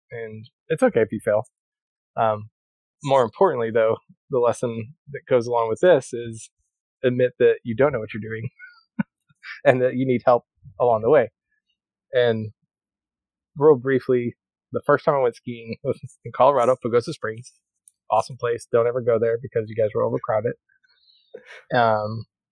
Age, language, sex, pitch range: 20-39, English, male, 115-175 Hz